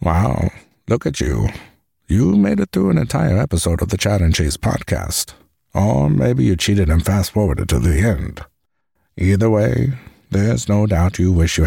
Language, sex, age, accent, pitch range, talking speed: English, male, 60-79, American, 85-105 Hz, 175 wpm